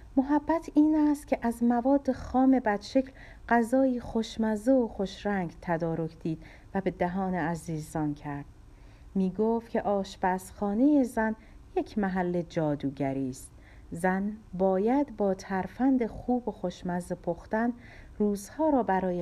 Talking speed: 120 wpm